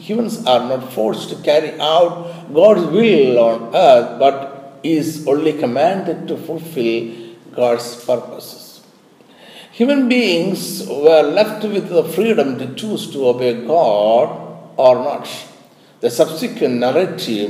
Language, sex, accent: Malayalam, male, native